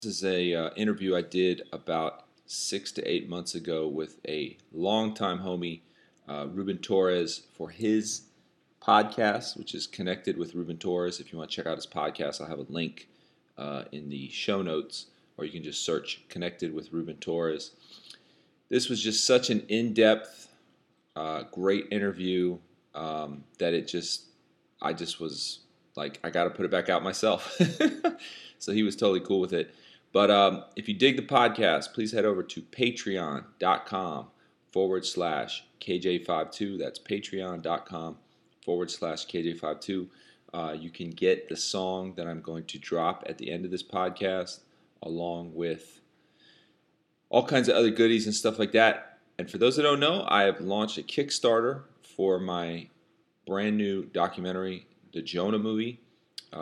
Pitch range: 85-110 Hz